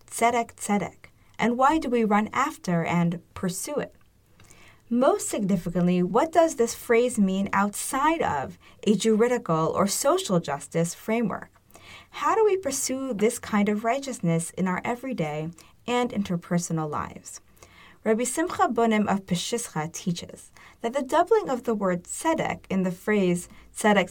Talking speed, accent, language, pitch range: 140 wpm, American, English, 180-250 Hz